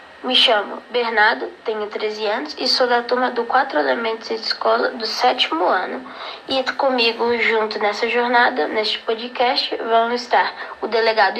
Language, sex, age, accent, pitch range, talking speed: Portuguese, female, 10-29, Brazilian, 220-270 Hz, 155 wpm